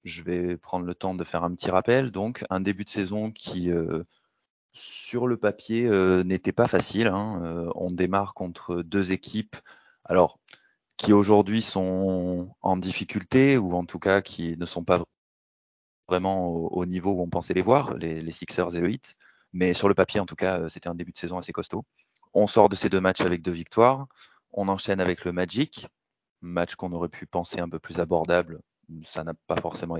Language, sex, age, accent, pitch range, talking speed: French, male, 30-49, French, 85-110 Hz, 205 wpm